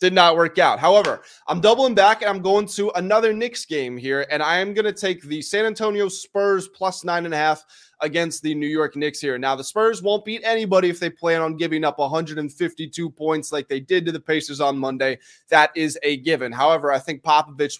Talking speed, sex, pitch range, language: 215 wpm, male, 140-185 Hz, English